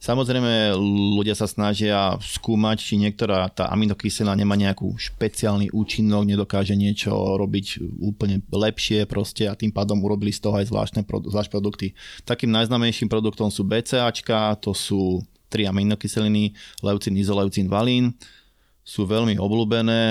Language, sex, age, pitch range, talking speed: Slovak, male, 20-39, 100-110 Hz, 130 wpm